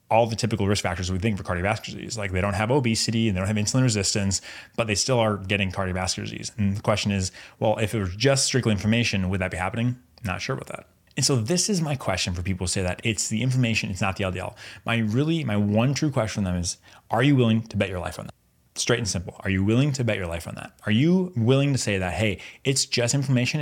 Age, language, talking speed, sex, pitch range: 20-39, English, 265 wpm, male, 95-120 Hz